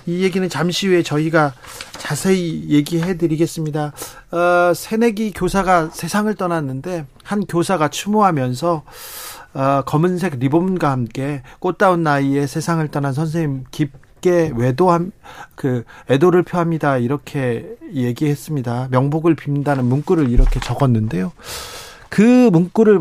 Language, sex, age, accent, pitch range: Korean, male, 40-59, native, 135-185 Hz